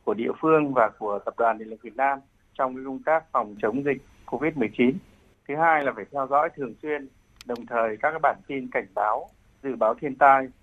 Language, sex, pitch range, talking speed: Vietnamese, male, 110-145 Hz, 215 wpm